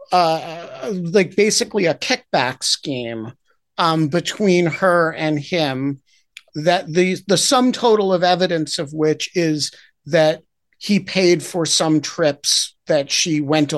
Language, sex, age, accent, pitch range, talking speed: English, male, 50-69, American, 155-205 Hz, 130 wpm